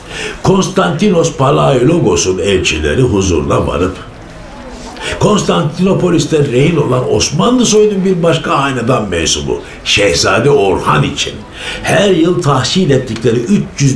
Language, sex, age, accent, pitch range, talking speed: Turkish, male, 60-79, native, 100-160 Hz, 100 wpm